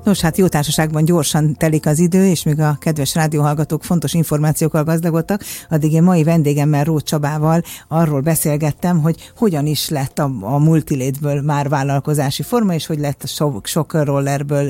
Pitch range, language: 140-165 Hz, Hungarian